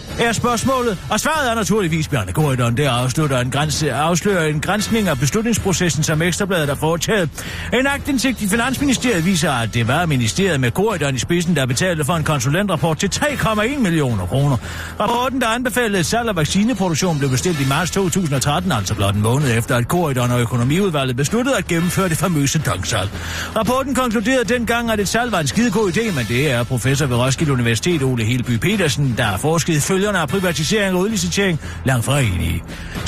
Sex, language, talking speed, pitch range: male, Danish, 175 wpm, 135-205 Hz